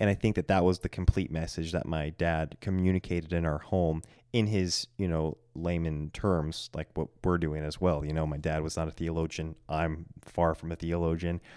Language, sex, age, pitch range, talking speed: English, male, 20-39, 80-95 Hz, 215 wpm